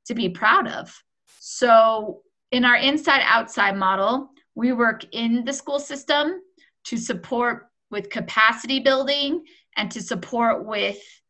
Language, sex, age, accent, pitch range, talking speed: English, female, 30-49, American, 195-245 Hz, 135 wpm